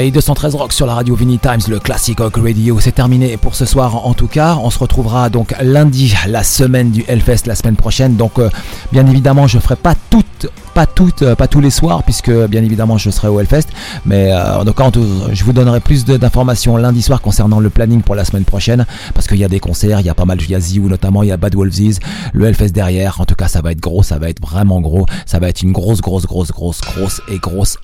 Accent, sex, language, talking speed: French, male, French, 260 wpm